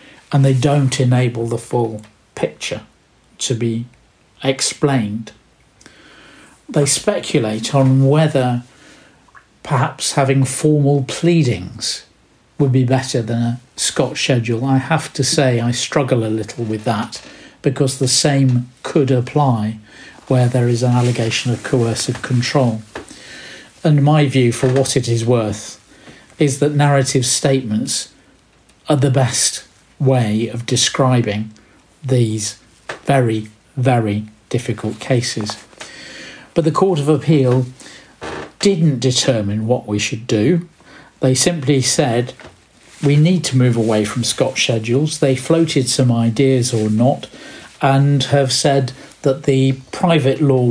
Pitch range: 120-140 Hz